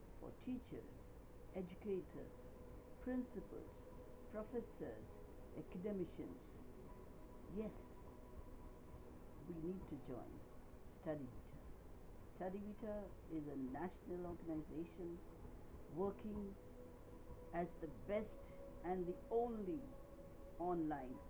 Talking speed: 70 wpm